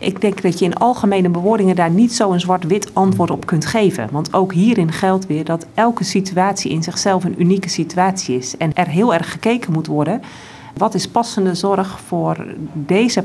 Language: Dutch